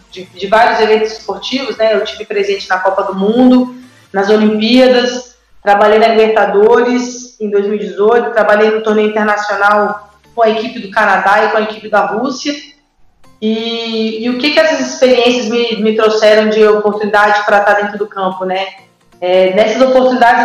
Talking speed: 165 wpm